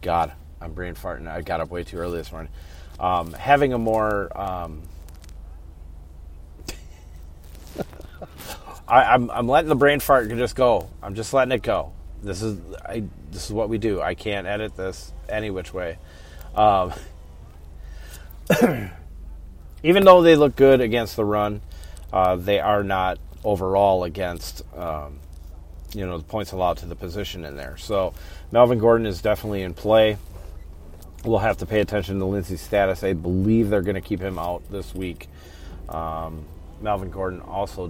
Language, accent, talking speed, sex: English, American, 160 wpm, male